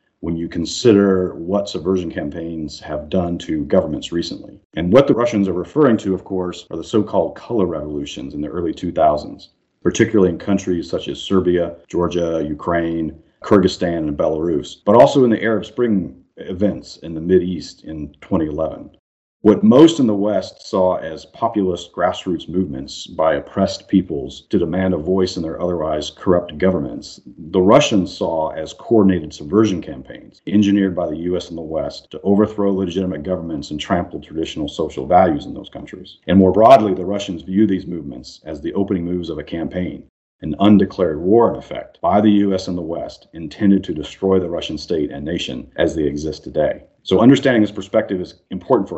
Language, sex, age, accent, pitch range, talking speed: English, male, 40-59, American, 85-100 Hz, 180 wpm